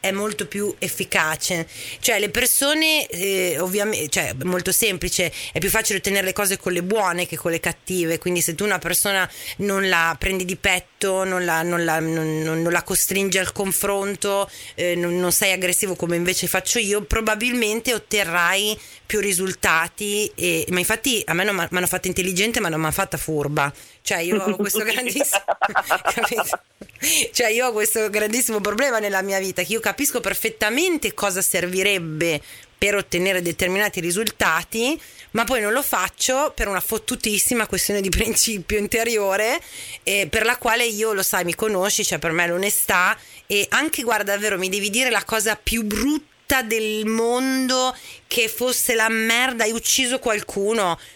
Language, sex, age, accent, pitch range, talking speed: Italian, female, 30-49, native, 180-225 Hz, 165 wpm